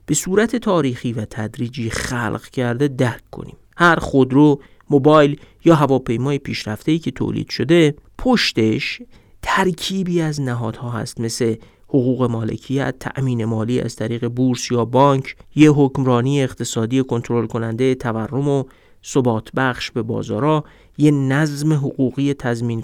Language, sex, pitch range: Persian, male, 120-150 Hz